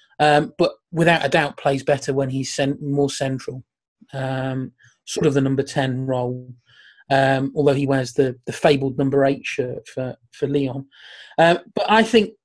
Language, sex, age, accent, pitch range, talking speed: English, male, 30-49, British, 135-155 Hz, 175 wpm